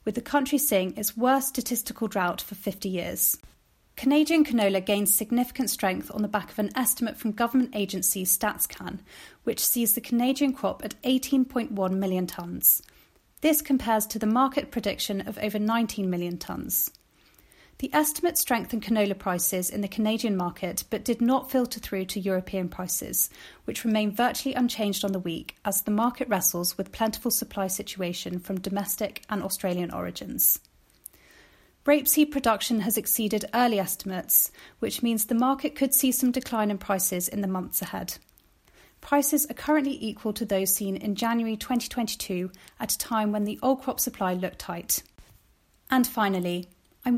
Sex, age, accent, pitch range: female, 30-49, British, 195-245 Hz